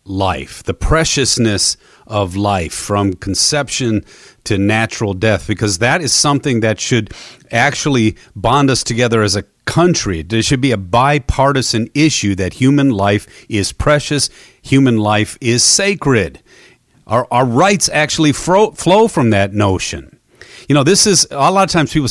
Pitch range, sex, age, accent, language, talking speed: 95-130 Hz, male, 40-59, American, English, 150 wpm